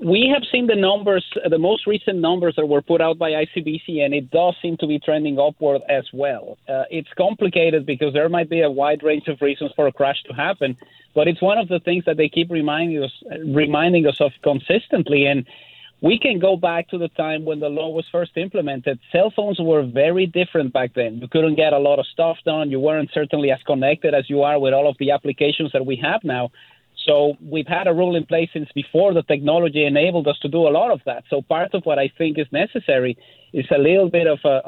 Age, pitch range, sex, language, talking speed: 30-49, 140-170 Hz, male, English, 235 wpm